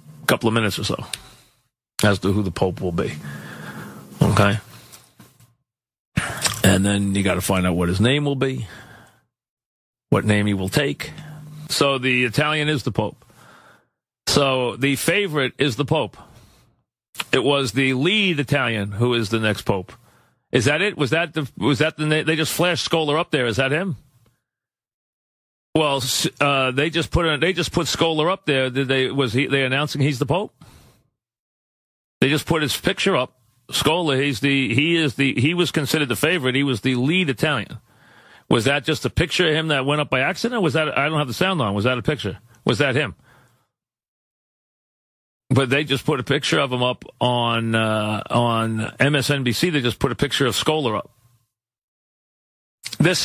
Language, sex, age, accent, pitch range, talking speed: English, male, 40-59, American, 115-150 Hz, 185 wpm